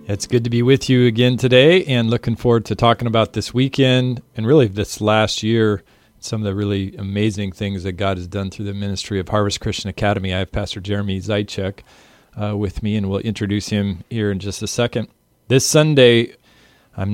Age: 40-59